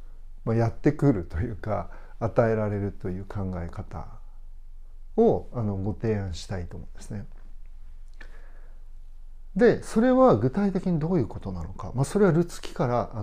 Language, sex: Japanese, male